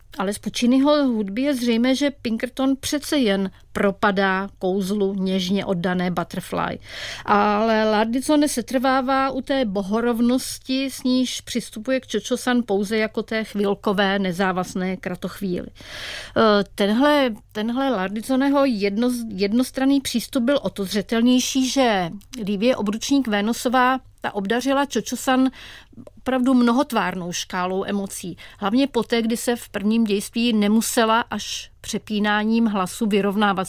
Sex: female